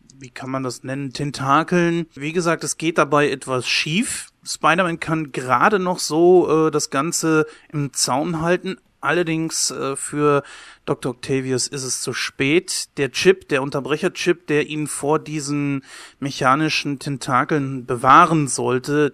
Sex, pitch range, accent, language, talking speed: male, 135-160 Hz, German, German, 140 wpm